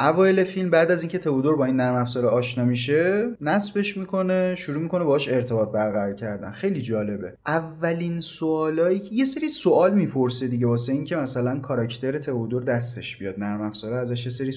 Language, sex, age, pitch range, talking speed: Persian, male, 30-49, 125-165 Hz, 170 wpm